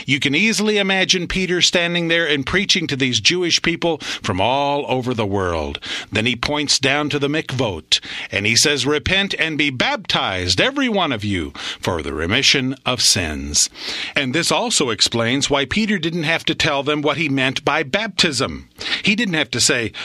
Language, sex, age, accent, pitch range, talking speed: English, male, 50-69, American, 115-165 Hz, 185 wpm